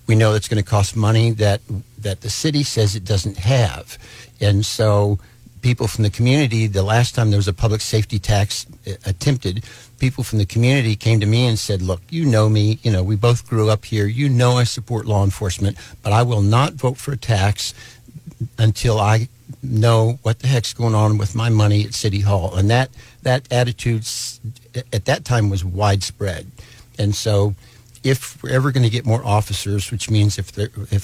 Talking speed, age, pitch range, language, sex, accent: 200 wpm, 60-79, 105-120 Hz, English, male, American